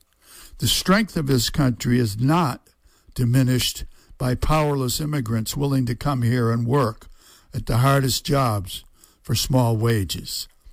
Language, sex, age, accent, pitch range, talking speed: English, male, 60-79, American, 115-145 Hz, 135 wpm